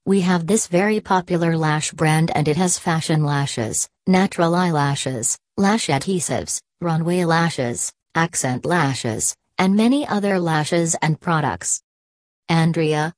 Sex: female